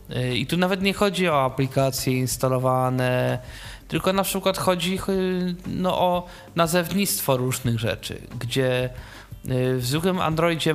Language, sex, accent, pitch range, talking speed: Polish, male, native, 120-145 Hz, 115 wpm